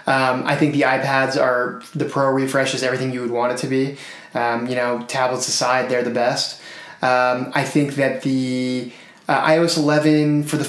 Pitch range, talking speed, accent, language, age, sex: 130-160 Hz, 195 wpm, American, English, 20-39, male